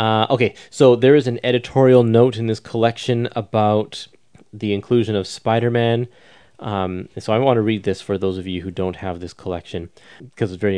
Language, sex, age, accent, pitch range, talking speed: English, male, 20-39, American, 100-120 Hz, 195 wpm